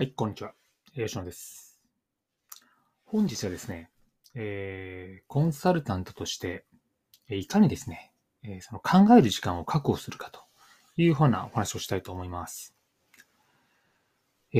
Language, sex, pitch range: Japanese, male, 95-140 Hz